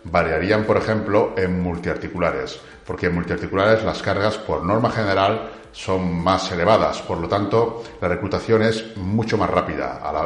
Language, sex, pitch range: Spanish, male, 90-110 Hz